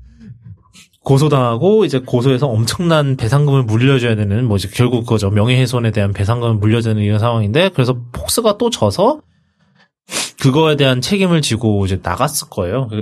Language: Korean